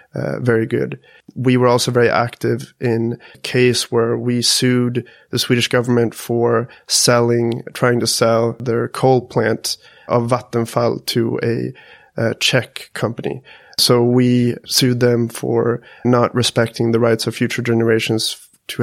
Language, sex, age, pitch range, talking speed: English, male, 30-49, 115-125 Hz, 145 wpm